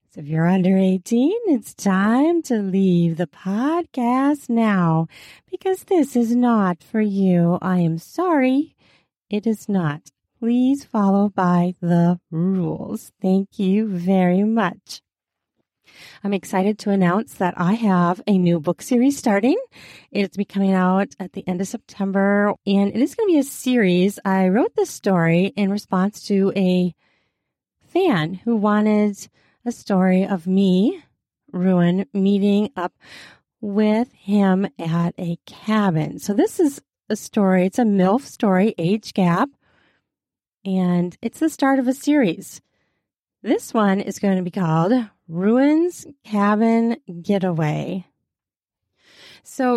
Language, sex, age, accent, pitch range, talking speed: English, female, 30-49, American, 185-240 Hz, 135 wpm